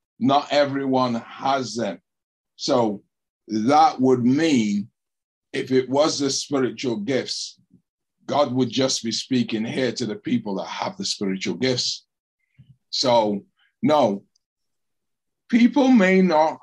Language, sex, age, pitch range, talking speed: English, male, 50-69, 125-150 Hz, 120 wpm